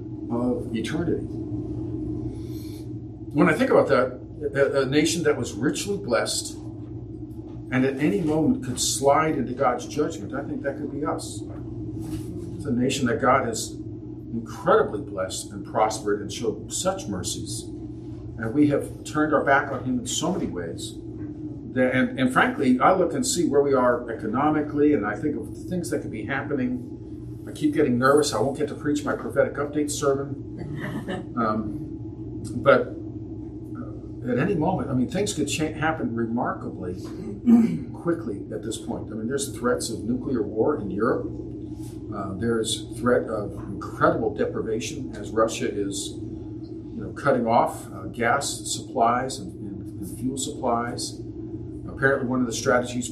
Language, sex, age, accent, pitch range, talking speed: English, male, 50-69, American, 110-145 Hz, 155 wpm